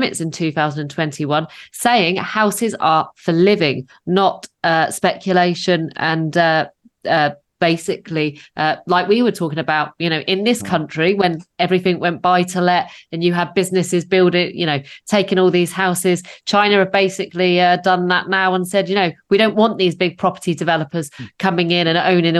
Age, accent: 30-49, British